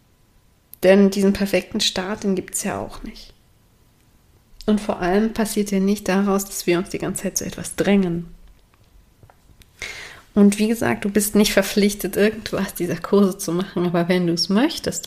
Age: 30-49